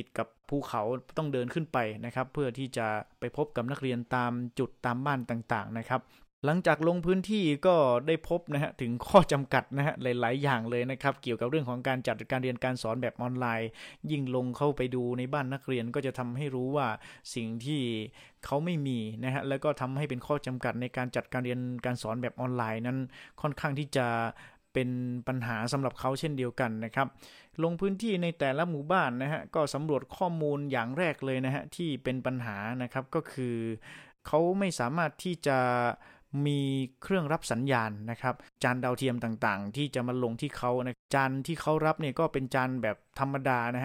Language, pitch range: Thai, 125-145 Hz